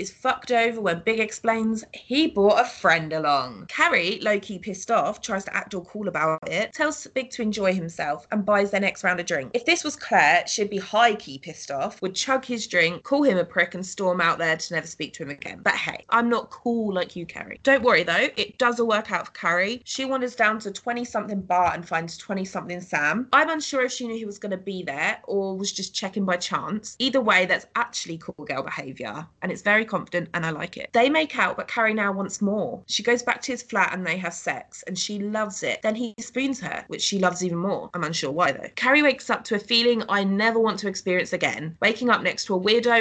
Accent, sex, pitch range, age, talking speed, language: British, female, 175-235 Hz, 20-39, 245 wpm, English